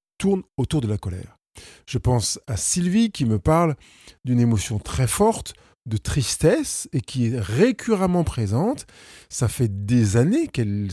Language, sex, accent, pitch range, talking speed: French, male, French, 105-150 Hz, 155 wpm